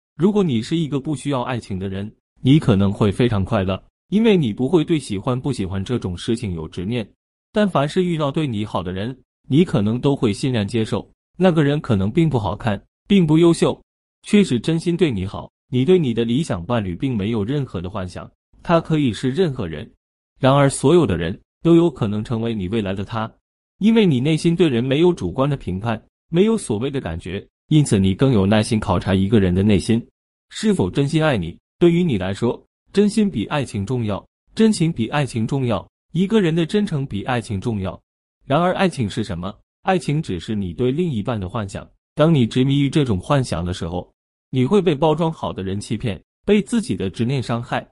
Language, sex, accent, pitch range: Chinese, male, native, 100-160 Hz